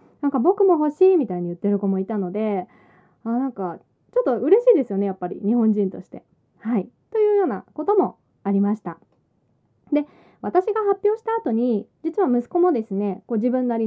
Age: 20-39